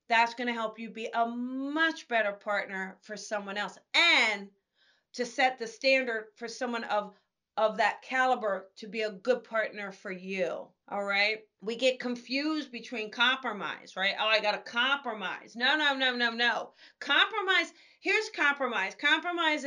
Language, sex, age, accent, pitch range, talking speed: English, female, 40-59, American, 220-275 Hz, 160 wpm